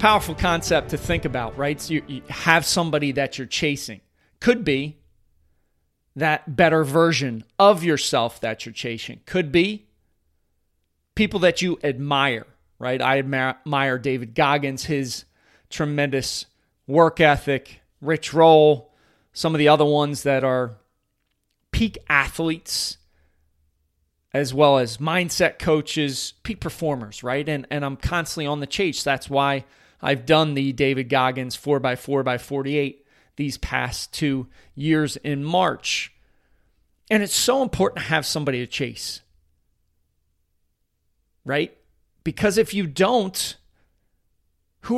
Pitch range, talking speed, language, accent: 115-160 Hz, 125 wpm, English, American